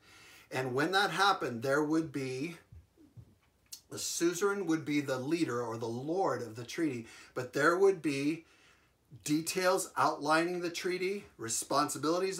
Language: English